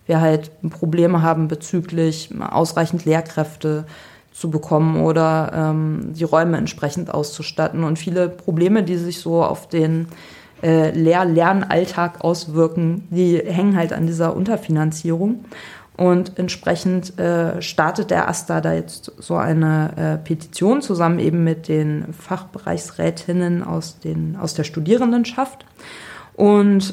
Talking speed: 125 wpm